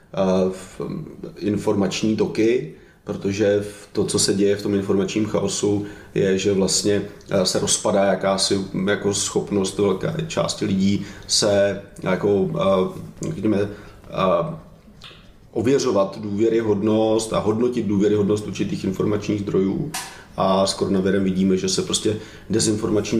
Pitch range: 100-105 Hz